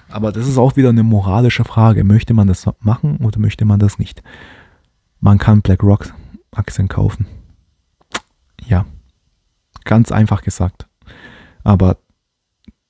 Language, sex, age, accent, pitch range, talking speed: German, male, 20-39, German, 95-115 Hz, 120 wpm